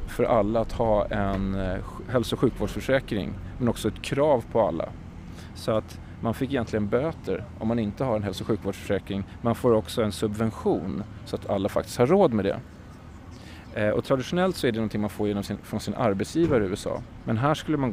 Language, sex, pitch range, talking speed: Swedish, male, 95-115 Hz, 200 wpm